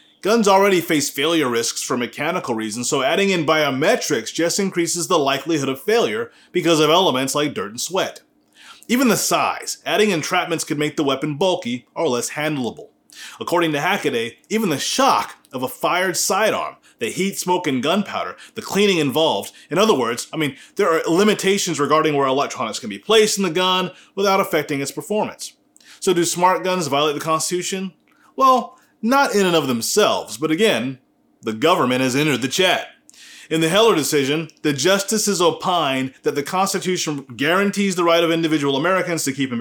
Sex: male